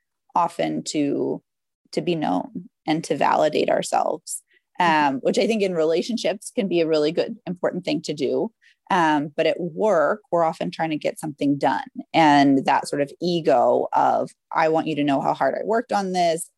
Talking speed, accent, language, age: 190 wpm, American, English, 30-49